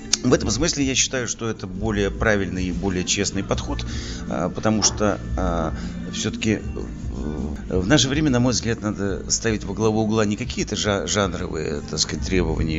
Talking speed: 145 wpm